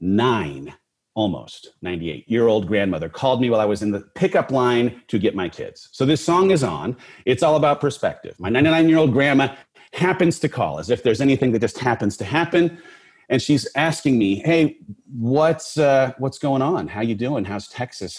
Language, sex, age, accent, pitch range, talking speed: English, male, 30-49, American, 105-145 Hz, 200 wpm